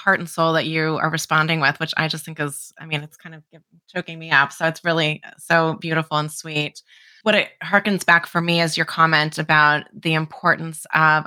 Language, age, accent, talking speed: English, 20-39, American, 220 wpm